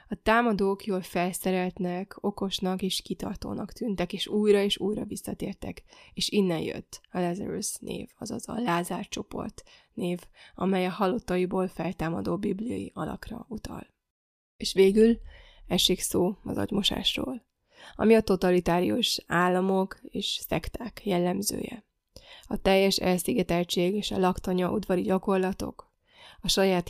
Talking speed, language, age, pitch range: 120 wpm, Hungarian, 20-39, 180-200 Hz